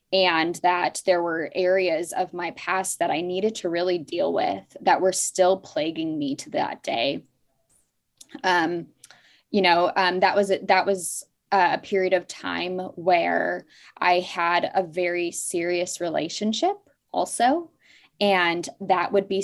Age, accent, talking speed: 10-29, American, 145 wpm